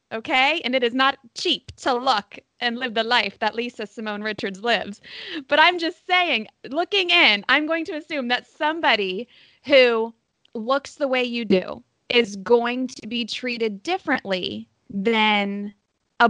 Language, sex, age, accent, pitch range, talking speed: English, female, 20-39, American, 210-285 Hz, 160 wpm